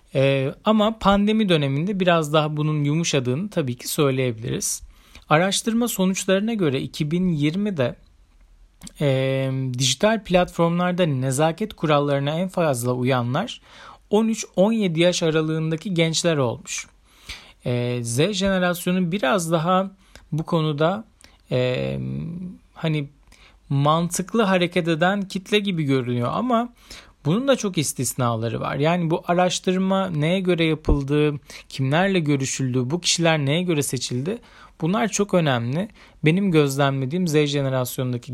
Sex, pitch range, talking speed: male, 130-185 Hz, 110 wpm